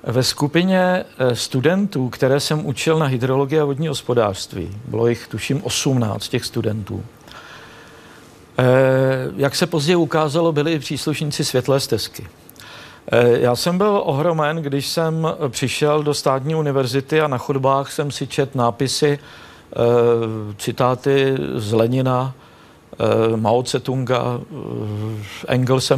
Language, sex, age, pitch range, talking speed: Czech, male, 50-69, 125-150 Hz, 115 wpm